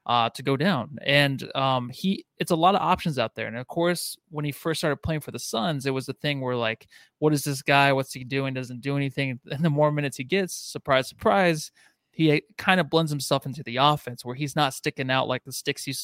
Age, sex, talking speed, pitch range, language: 20-39, male, 245 wpm, 130-160 Hz, English